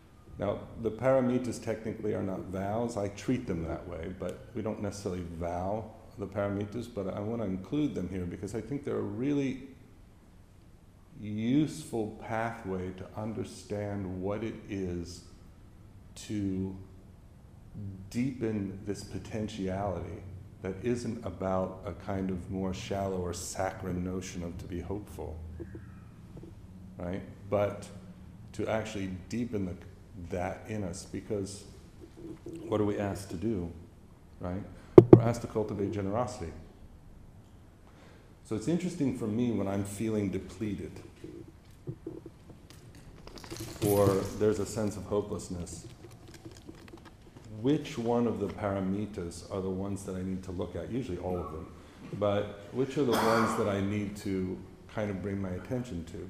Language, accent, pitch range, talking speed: English, American, 95-110 Hz, 135 wpm